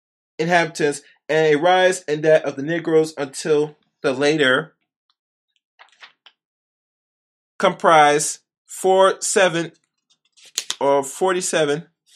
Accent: American